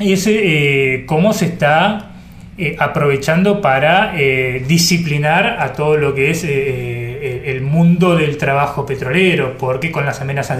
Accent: Argentinian